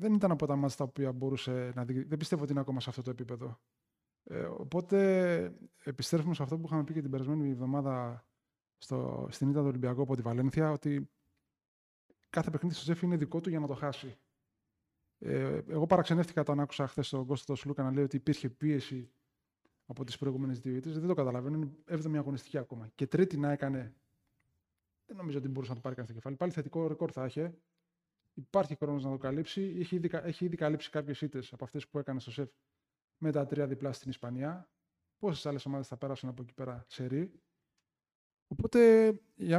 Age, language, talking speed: 20-39, Greek, 195 wpm